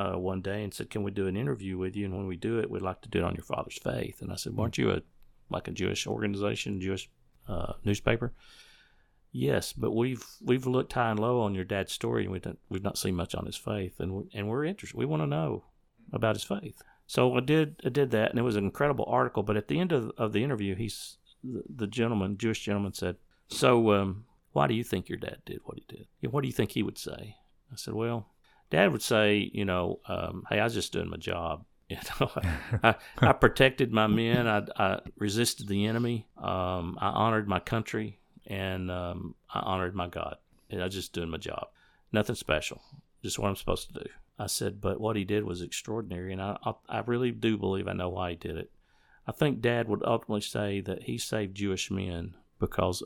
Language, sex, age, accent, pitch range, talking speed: English, male, 50-69, American, 95-115 Hz, 225 wpm